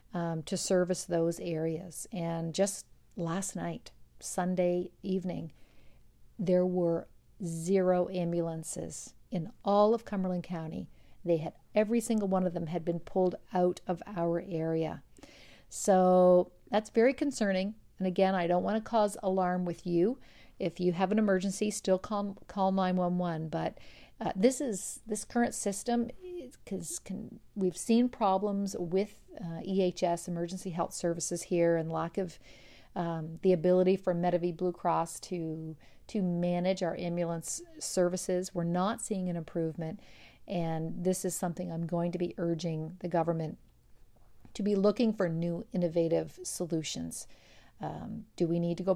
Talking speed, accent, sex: 150 wpm, American, female